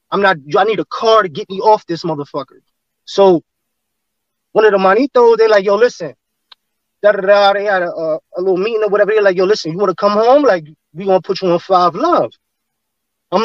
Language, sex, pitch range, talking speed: English, male, 175-215 Hz, 225 wpm